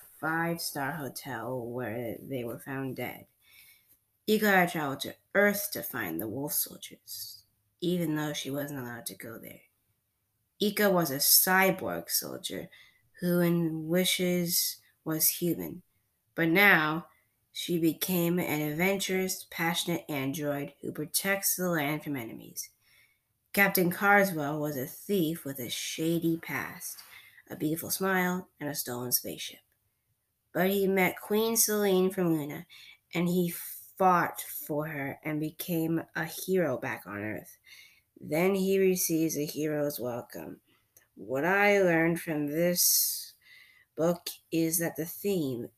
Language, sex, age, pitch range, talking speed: English, female, 20-39, 135-180 Hz, 130 wpm